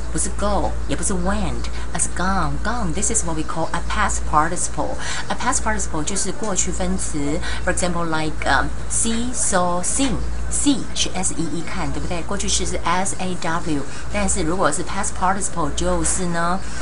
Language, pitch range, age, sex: Chinese, 150-200 Hz, 30-49, female